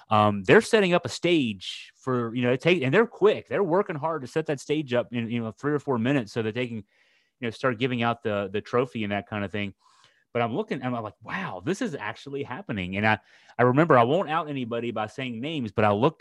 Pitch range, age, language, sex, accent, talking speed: 110-145 Hz, 30-49, English, male, American, 260 wpm